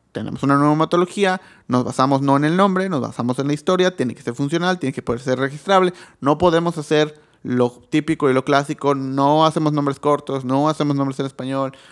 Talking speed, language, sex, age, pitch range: 200 wpm, Spanish, male, 30-49, 130-155 Hz